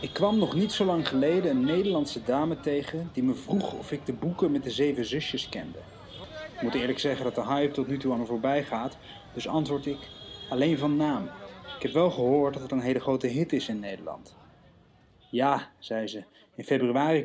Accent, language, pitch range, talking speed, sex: Dutch, Dutch, 125-160 Hz, 210 wpm, male